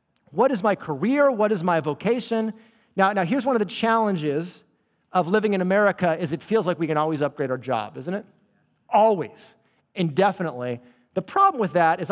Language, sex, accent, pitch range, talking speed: English, male, American, 145-215 Hz, 190 wpm